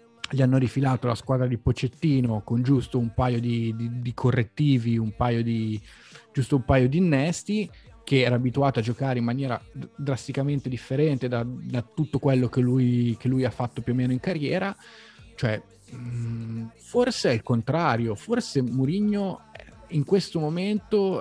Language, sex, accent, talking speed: Italian, male, native, 165 wpm